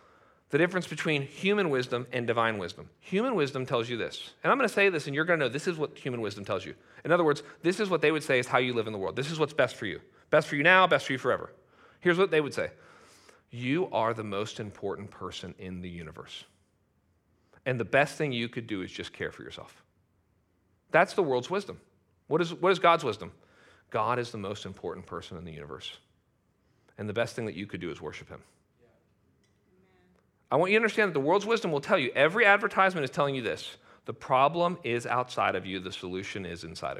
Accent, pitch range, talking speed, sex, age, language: American, 100-170 Hz, 230 wpm, male, 40-59, English